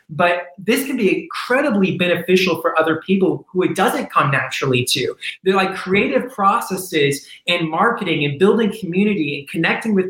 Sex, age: male, 30-49